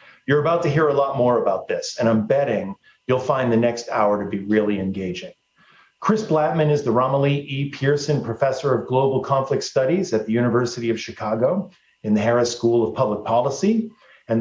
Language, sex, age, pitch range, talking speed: English, male, 40-59, 110-155 Hz, 190 wpm